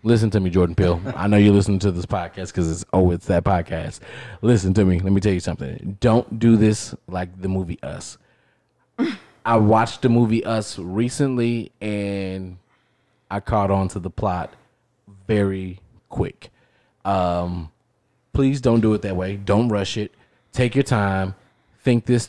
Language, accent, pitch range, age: English, American, 95-115 Hz, 20-39